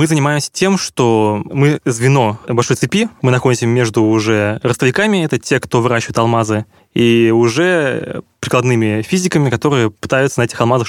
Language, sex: Russian, male